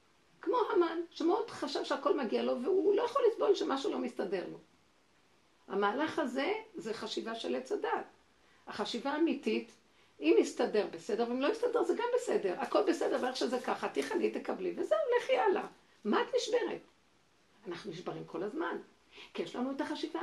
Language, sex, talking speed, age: Hebrew, female, 165 wpm, 50-69